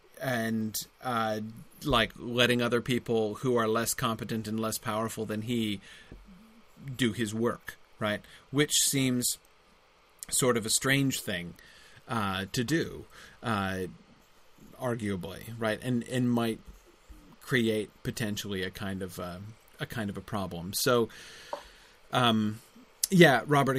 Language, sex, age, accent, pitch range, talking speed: English, male, 30-49, American, 110-140 Hz, 125 wpm